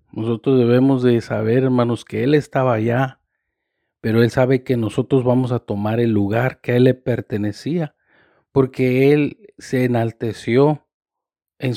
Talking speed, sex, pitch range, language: 150 wpm, male, 115-135 Hz, Spanish